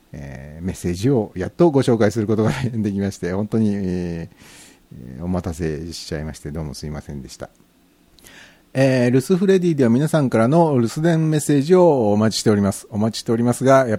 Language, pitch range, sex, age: Japanese, 90-130 Hz, male, 60-79